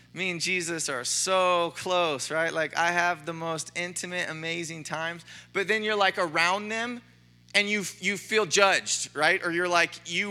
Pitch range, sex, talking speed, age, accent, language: 125-195 Hz, male, 180 wpm, 20-39, American, English